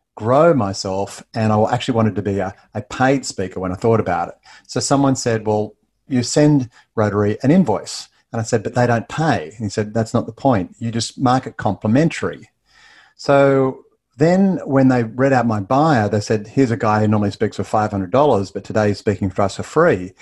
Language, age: English, 40-59